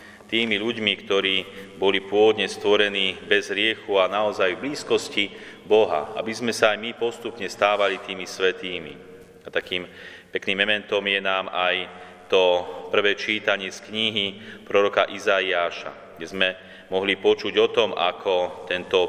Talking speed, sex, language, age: 140 wpm, male, Slovak, 30-49